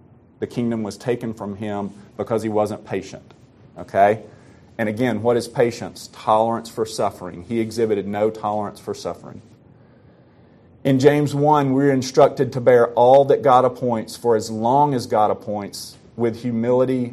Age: 40-59